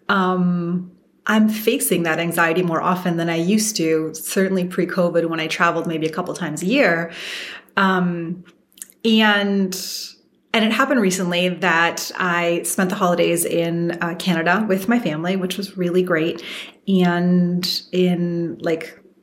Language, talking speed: English, 145 wpm